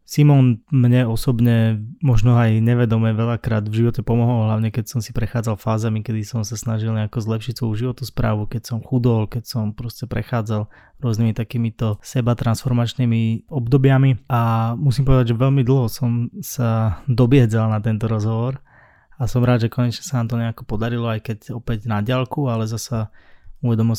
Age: 20-39